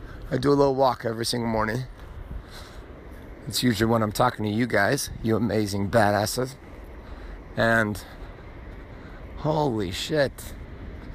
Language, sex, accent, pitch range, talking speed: English, male, American, 95-140 Hz, 120 wpm